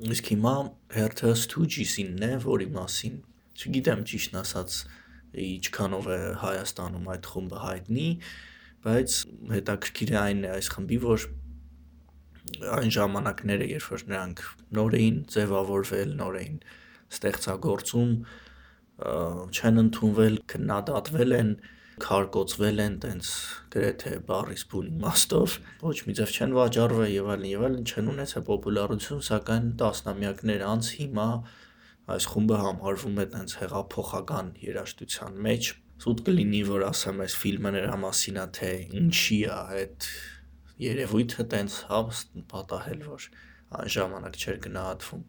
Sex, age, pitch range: male, 20-39, 95-115 Hz